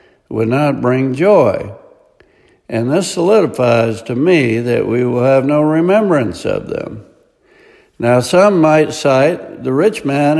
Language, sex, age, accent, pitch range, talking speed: English, male, 60-79, American, 115-155 Hz, 140 wpm